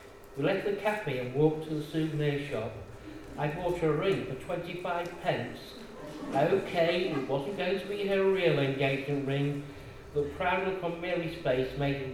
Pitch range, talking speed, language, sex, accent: 135-165 Hz, 175 wpm, English, male, British